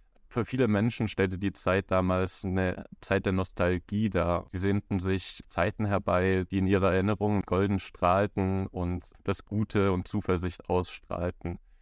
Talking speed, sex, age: 145 wpm, male, 20-39